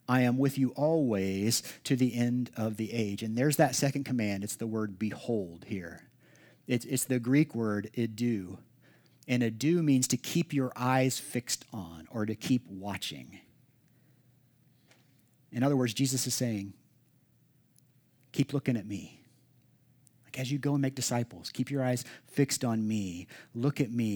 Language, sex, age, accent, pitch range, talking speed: English, male, 40-59, American, 120-160 Hz, 160 wpm